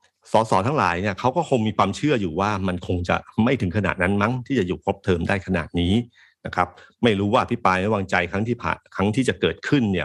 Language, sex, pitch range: Thai, male, 90-120 Hz